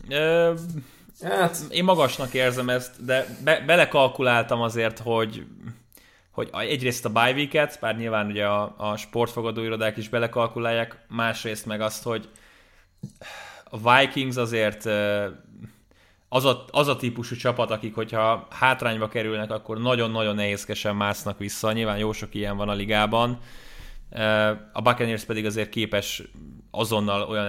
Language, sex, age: Hungarian, male, 20-39